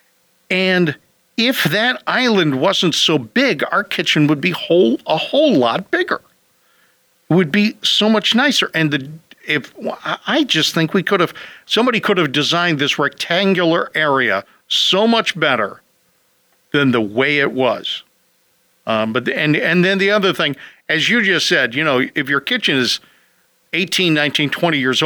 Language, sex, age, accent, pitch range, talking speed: English, male, 50-69, American, 150-210 Hz, 165 wpm